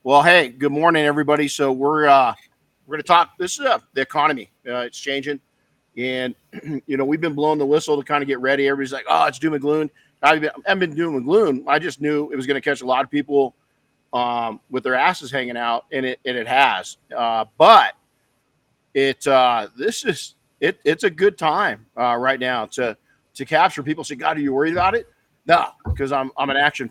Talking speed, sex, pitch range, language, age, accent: 220 wpm, male, 130-150 Hz, English, 50-69, American